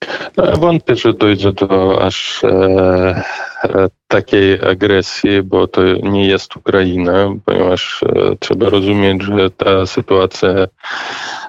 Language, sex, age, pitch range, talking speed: Polish, male, 20-39, 95-100 Hz, 95 wpm